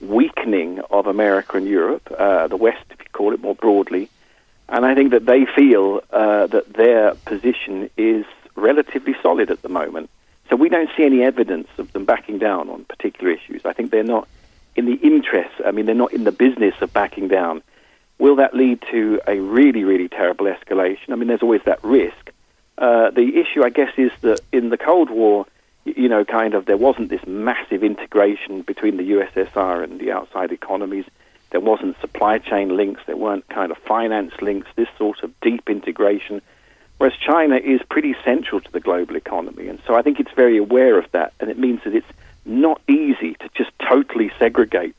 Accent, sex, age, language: British, male, 50-69, English